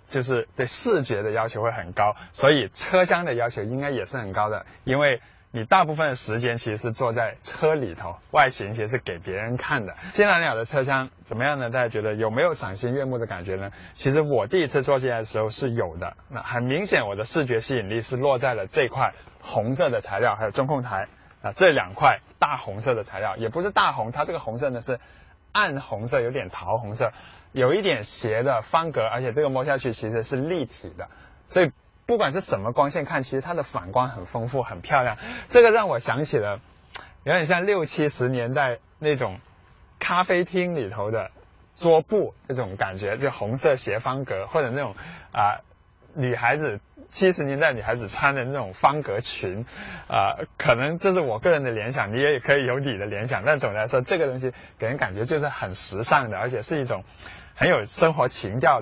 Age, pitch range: 20-39, 110-150 Hz